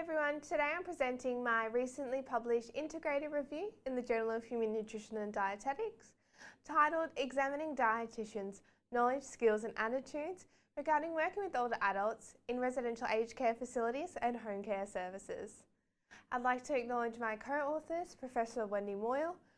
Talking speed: 145 wpm